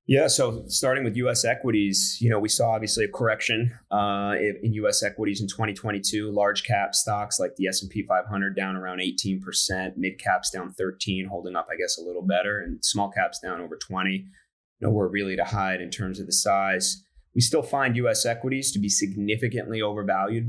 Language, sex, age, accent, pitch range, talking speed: English, male, 30-49, American, 95-110 Hz, 200 wpm